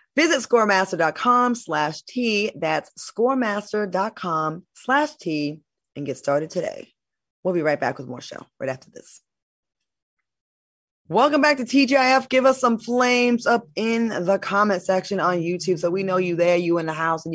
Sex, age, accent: female, 20-39, American